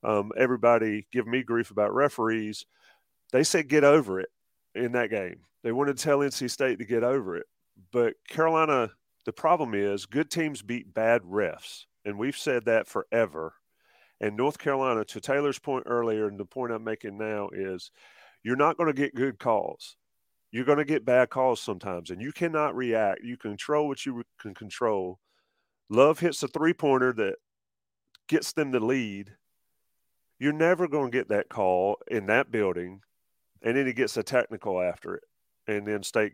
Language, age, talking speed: English, 40-59, 180 wpm